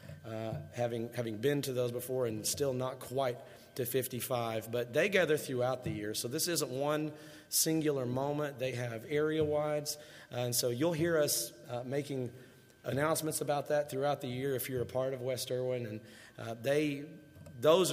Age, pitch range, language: 30-49, 120-150 Hz, English